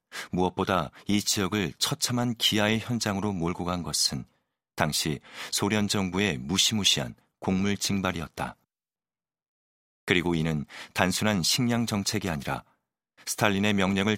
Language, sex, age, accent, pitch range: Korean, male, 40-59, native, 85-105 Hz